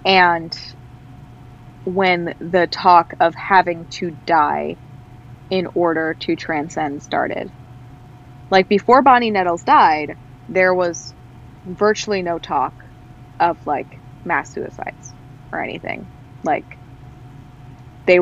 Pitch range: 130-190 Hz